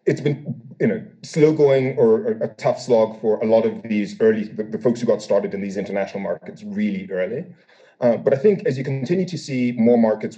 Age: 30-49